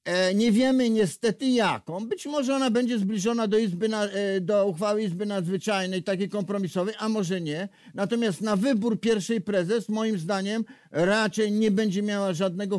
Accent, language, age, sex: native, Polish, 50-69, male